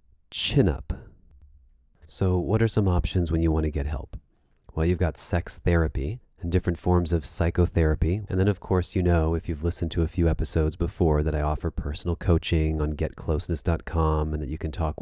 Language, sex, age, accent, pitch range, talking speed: English, male, 30-49, American, 80-95 Hz, 195 wpm